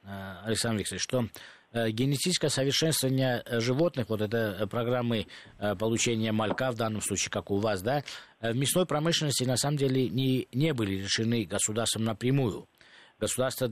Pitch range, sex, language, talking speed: 110-135 Hz, male, Russian, 135 wpm